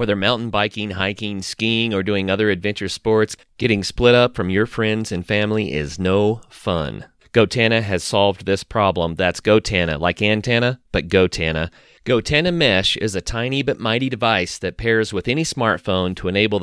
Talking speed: 170 wpm